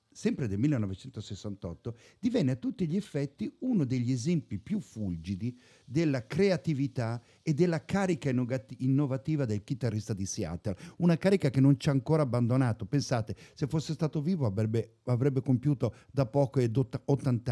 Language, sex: English, male